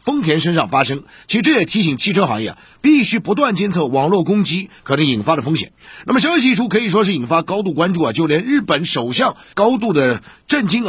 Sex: male